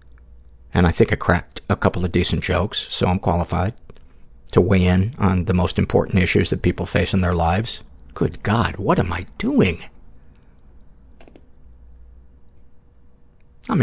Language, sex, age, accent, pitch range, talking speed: English, male, 50-69, American, 80-105 Hz, 150 wpm